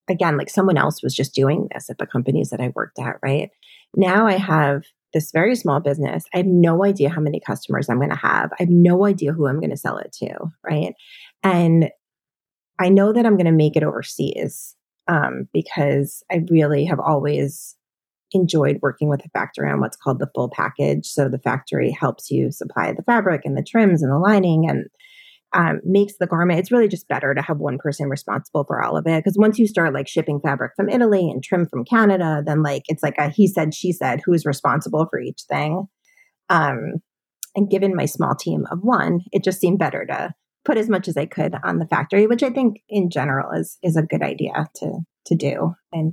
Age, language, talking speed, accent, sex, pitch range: 30-49, English, 215 wpm, American, female, 145-195 Hz